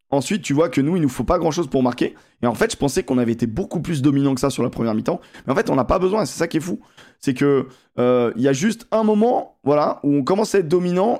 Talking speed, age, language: 300 wpm, 20-39, French